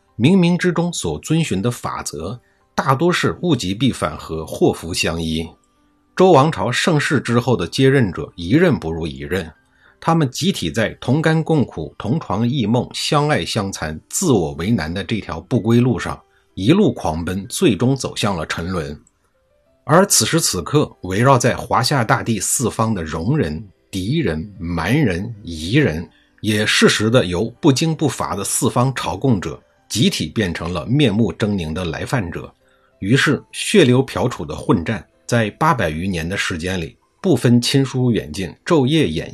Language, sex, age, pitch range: Chinese, male, 50-69, 85-140 Hz